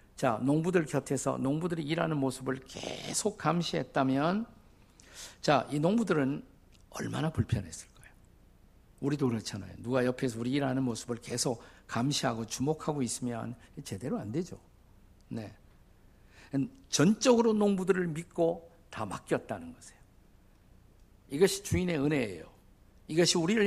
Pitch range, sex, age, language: 120-170 Hz, male, 50-69, Korean